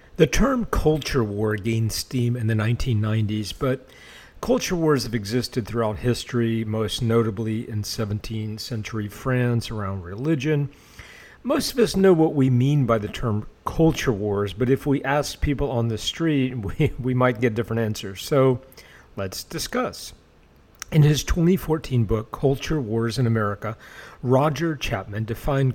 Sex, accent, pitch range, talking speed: male, American, 110-140 Hz, 150 wpm